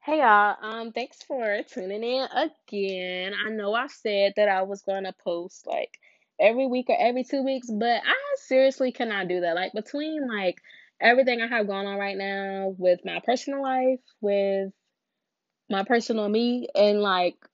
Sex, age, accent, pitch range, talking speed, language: female, 10-29, American, 185-250 Hz, 175 wpm, English